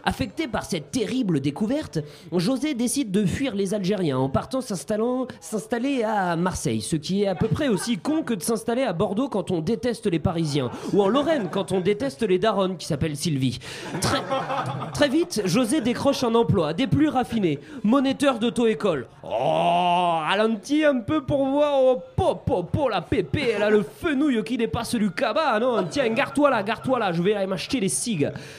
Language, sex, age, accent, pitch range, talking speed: French, male, 30-49, French, 165-235 Hz, 190 wpm